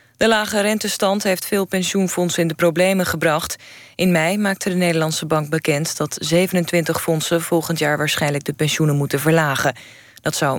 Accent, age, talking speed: Dutch, 20-39, 165 wpm